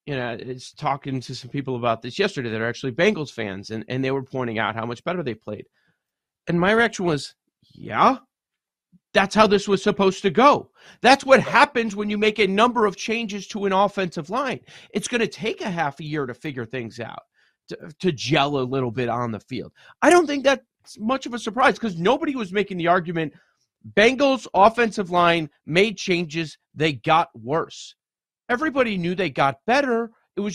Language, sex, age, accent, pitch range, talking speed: English, male, 40-59, American, 135-210 Hz, 200 wpm